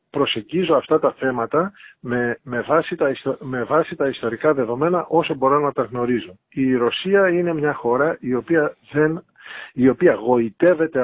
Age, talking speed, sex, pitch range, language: 50-69, 130 wpm, male, 135-185 Hz, Greek